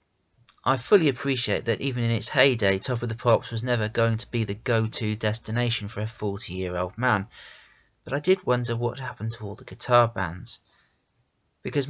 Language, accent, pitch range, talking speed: English, British, 100-125 Hz, 180 wpm